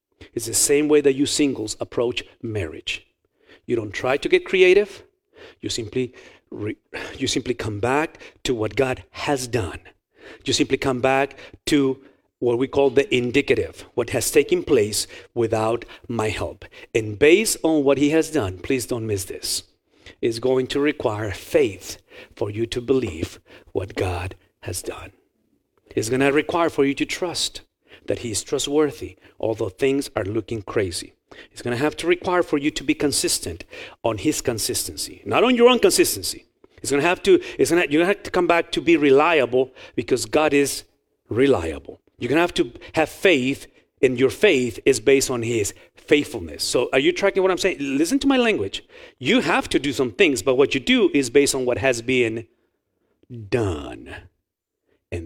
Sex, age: male, 50-69